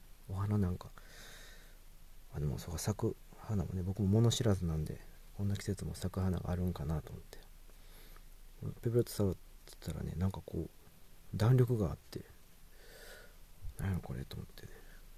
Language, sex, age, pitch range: Japanese, male, 40-59, 85-100 Hz